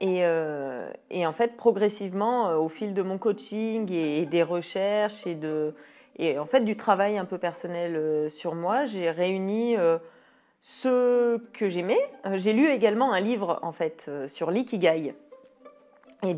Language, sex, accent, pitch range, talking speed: French, female, French, 170-230 Hz, 170 wpm